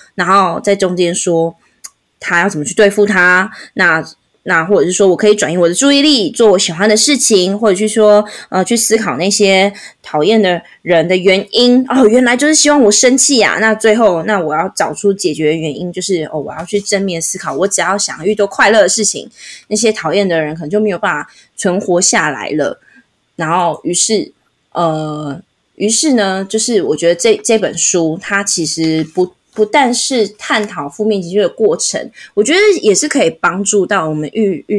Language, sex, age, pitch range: Chinese, female, 20-39, 165-215 Hz